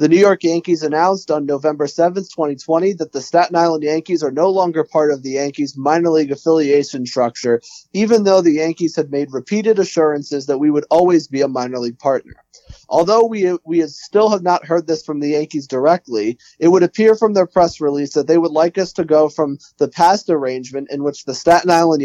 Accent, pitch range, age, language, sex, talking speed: American, 145-180 Hz, 30-49, English, male, 210 wpm